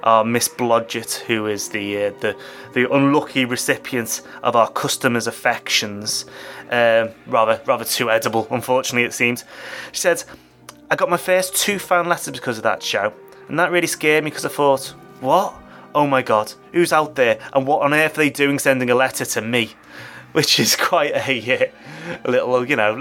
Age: 20-39